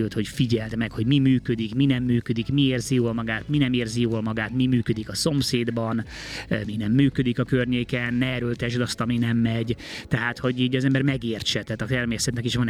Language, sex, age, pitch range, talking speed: Hungarian, male, 20-39, 110-125 Hz, 210 wpm